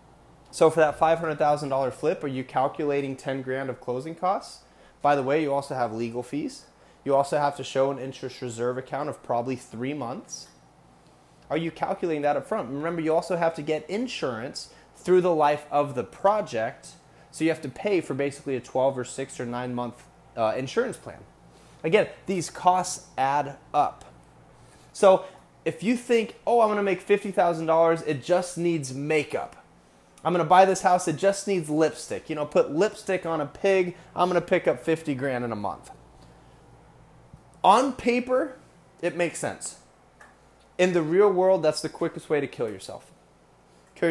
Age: 20-39